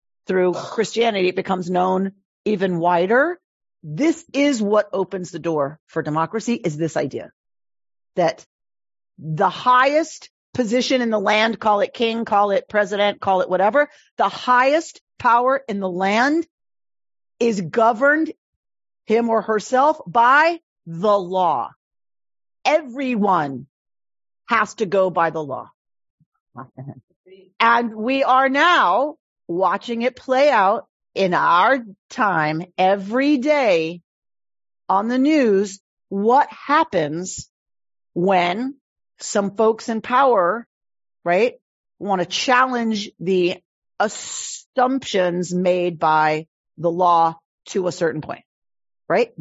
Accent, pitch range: American, 180-250 Hz